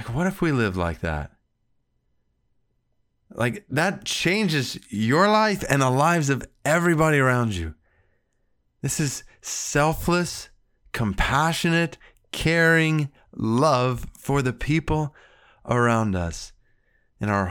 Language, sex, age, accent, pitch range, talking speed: English, male, 30-49, American, 110-165 Hz, 110 wpm